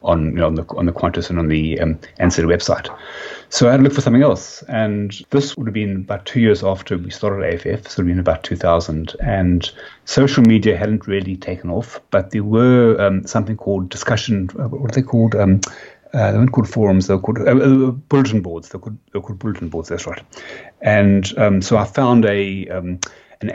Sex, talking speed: male, 230 wpm